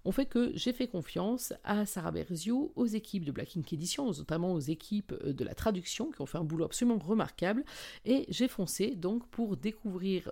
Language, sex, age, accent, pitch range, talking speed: French, female, 50-69, French, 165-220 Hz, 205 wpm